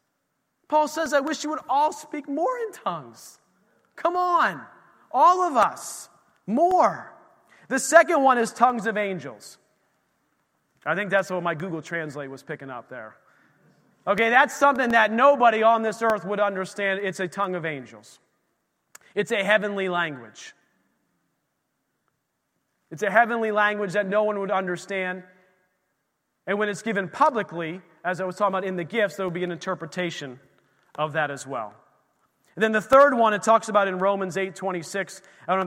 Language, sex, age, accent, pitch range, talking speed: English, male, 30-49, American, 180-220 Hz, 170 wpm